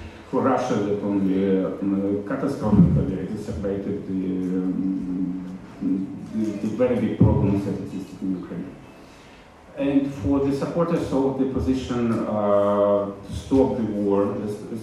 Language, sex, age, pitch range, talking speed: German, male, 40-59, 95-110 Hz, 125 wpm